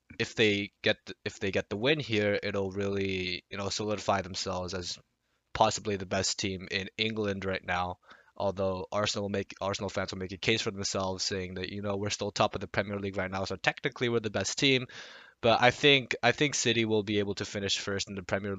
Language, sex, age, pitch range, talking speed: English, male, 20-39, 100-125 Hz, 225 wpm